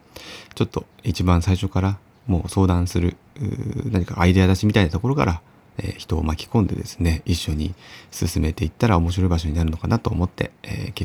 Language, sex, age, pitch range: Japanese, male, 30-49, 85-105 Hz